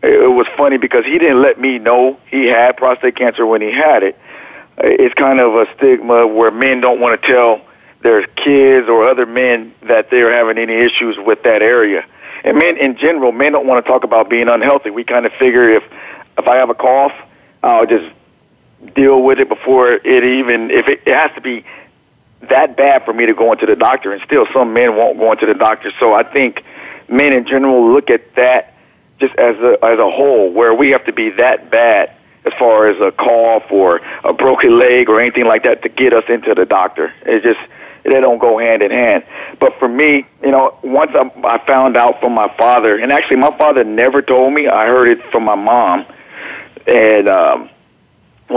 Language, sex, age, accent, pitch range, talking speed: English, male, 50-69, American, 115-135 Hz, 215 wpm